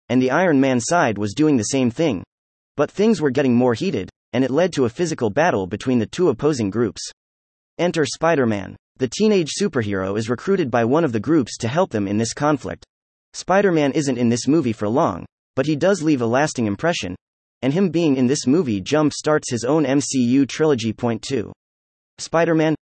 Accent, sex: American, male